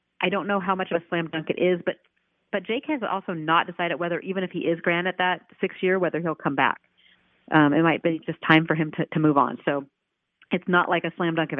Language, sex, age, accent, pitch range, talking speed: English, female, 40-59, American, 155-185 Hz, 270 wpm